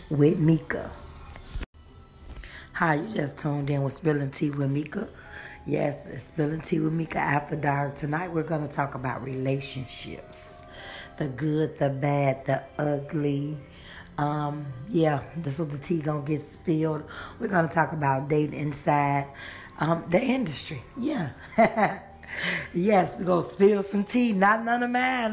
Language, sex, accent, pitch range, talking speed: English, female, American, 145-185 Hz, 155 wpm